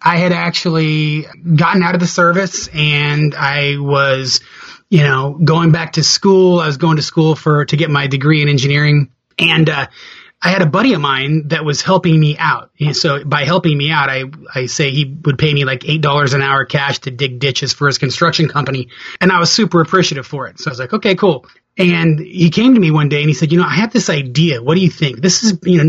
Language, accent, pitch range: English, American, 140-175 Hz